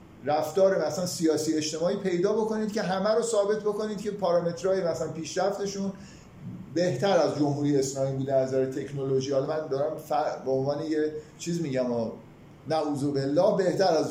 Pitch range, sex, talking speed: 150-195 Hz, male, 145 wpm